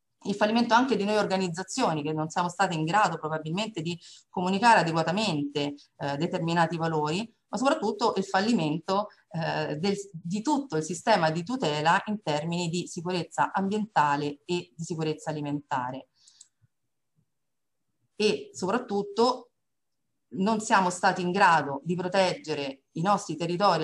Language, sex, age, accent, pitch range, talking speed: Italian, female, 40-59, native, 165-200 Hz, 130 wpm